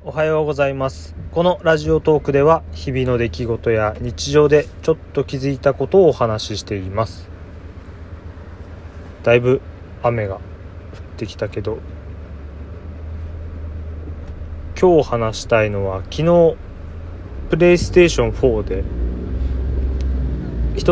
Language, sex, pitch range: Japanese, male, 80-130 Hz